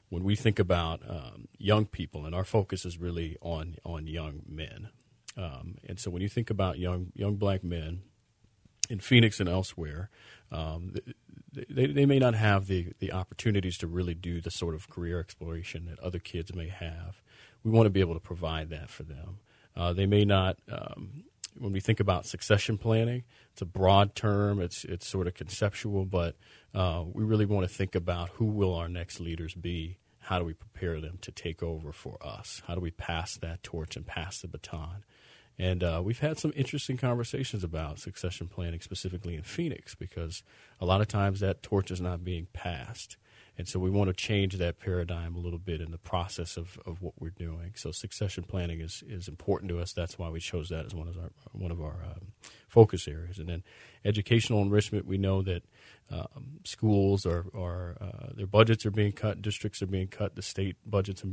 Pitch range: 85-105 Hz